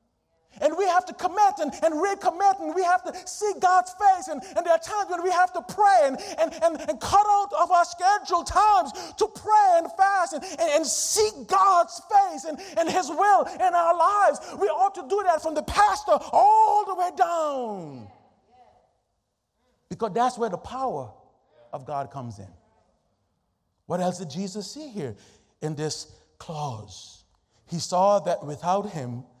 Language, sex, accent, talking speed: English, male, American, 180 wpm